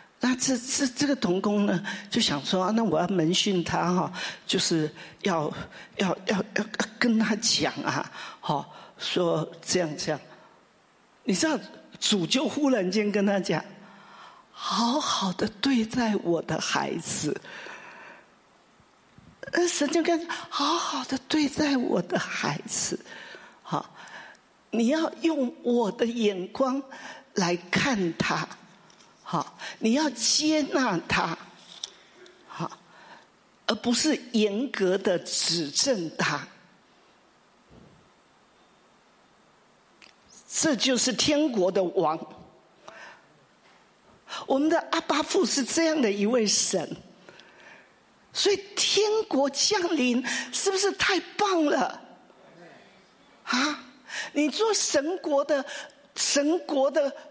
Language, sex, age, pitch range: English, male, 50-69, 205-305 Hz